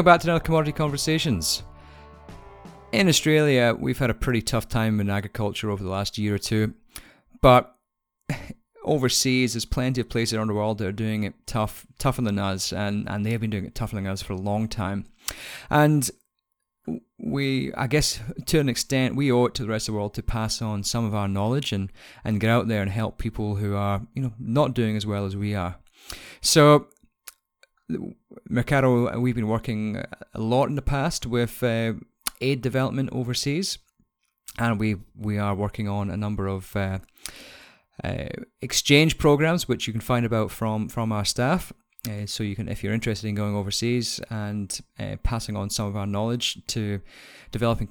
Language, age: English, 30-49